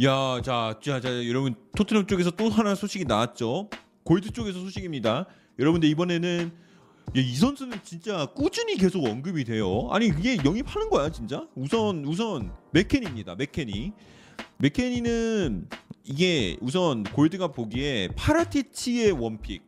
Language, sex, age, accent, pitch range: Korean, male, 30-49, native, 125-205 Hz